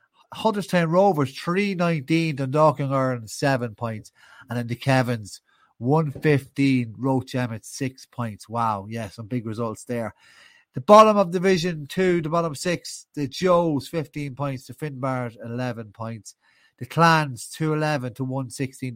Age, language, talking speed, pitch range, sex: 30-49, English, 140 wpm, 115-155 Hz, male